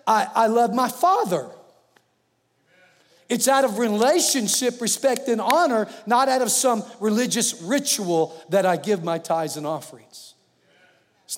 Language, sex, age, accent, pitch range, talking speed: English, male, 50-69, American, 185-260 Hz, 135 wpm